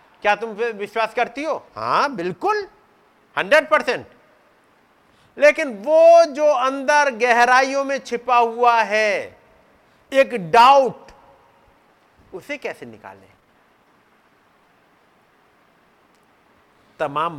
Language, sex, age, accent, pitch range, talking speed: Hindi, male, 50-69, native, 170-280 Hz, 85 wpm